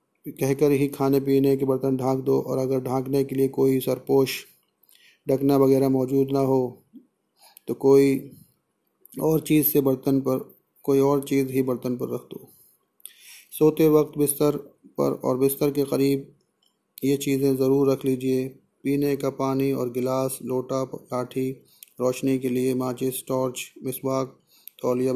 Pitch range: 130-140 Hz